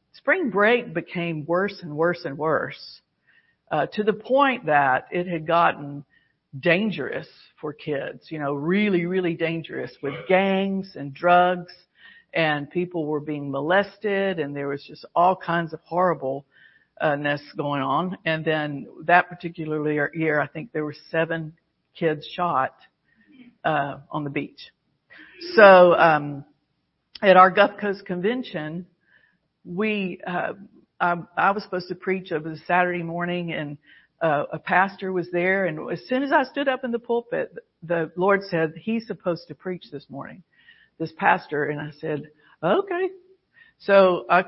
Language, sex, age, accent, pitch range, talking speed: English, female, 50-69, American, 160-210 Hz, 150 wpm